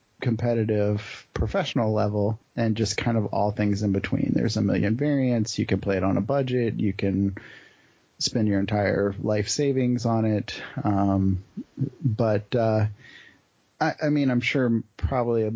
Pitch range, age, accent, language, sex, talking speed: 105-125 Hz, 30-49, American, English, male, 155 wpm